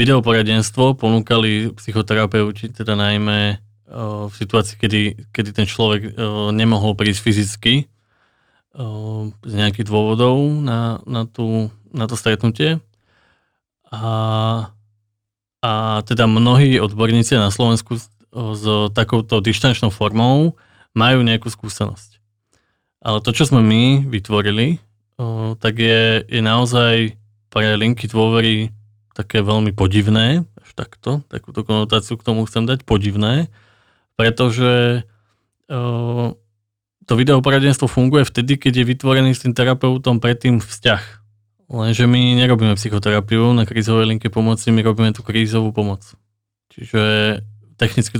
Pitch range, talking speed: 105-120 Hz, 120 wpm